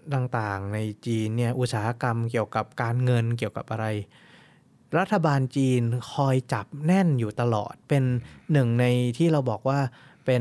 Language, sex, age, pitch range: Thai, male, 20-39, 115-155 Hz